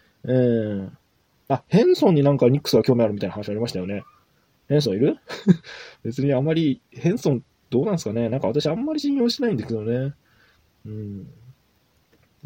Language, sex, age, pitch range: Japanese, male, 20-39, 110-140 Hz